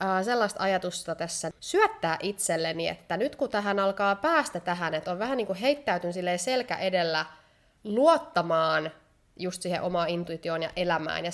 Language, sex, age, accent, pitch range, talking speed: Finnish, female, 20-39, native, 175-245 Hz, 150 wpm